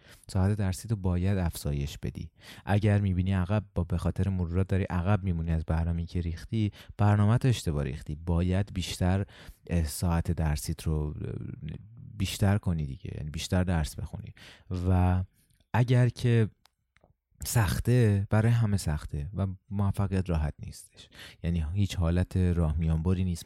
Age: 30-49